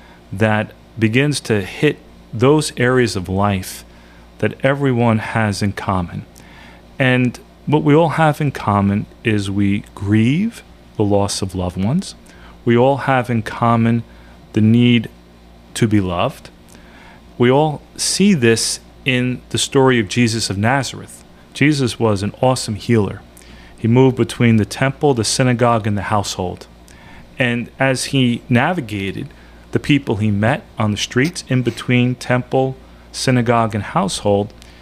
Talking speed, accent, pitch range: 140 wpm, American, 95-130 Hz